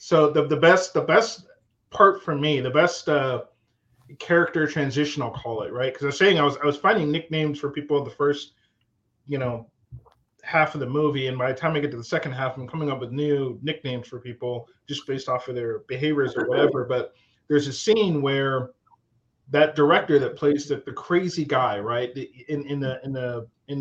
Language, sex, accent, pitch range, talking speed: English, male, American, 125-150 Hz, 215 wpm